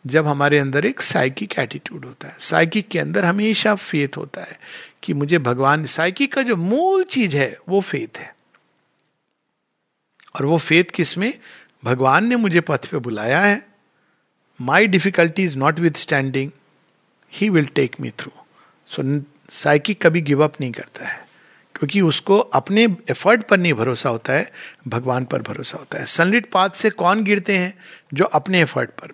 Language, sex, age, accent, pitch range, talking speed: Hindi, male, 50-69, native, 135-195 Hz, 170 wpm